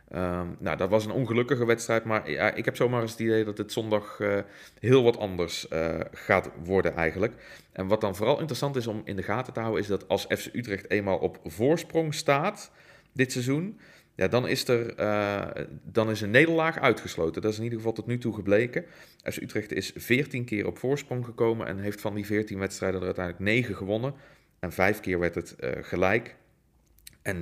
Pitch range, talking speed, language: 95-120 Hz, 205 wpm, Dutch